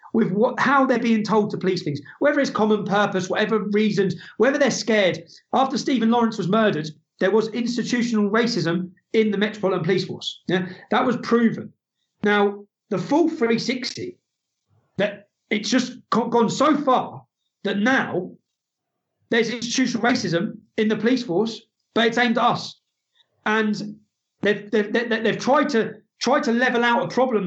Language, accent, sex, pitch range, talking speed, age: English, British, male, 180-225 Hz, 155 wpm, 40-59